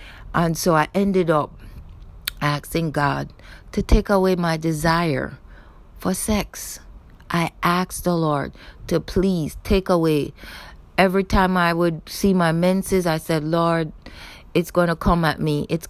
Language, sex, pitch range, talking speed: English, female, 155-175 Hz, 145 wpm